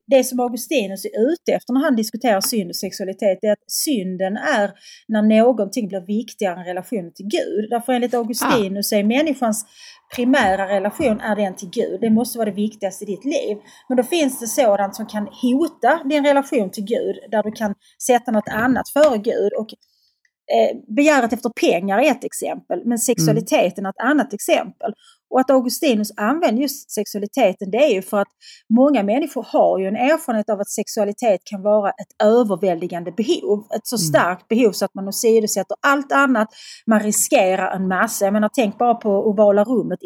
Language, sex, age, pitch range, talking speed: Swedish, female, 30-49, 205-255 Hz, 185 wpm